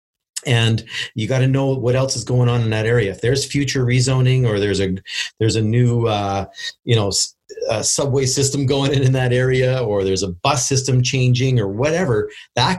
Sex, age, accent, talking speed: male, 40-59, American, 200 wpm